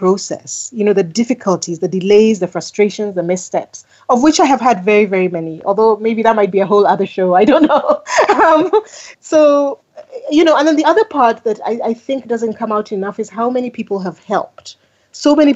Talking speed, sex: 215 wpm, female